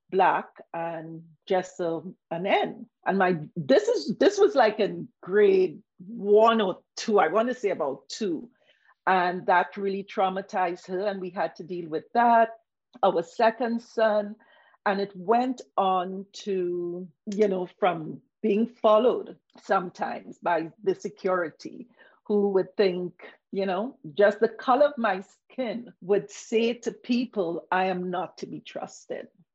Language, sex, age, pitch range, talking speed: English, female, 50-69, 180-220 Hz, 150 wpm